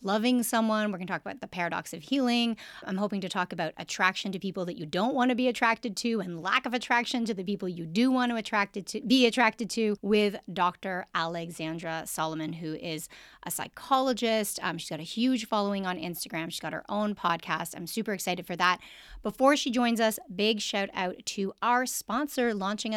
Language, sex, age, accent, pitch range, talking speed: English, female, 30-49, American, 175-225 Hz, 210 wpm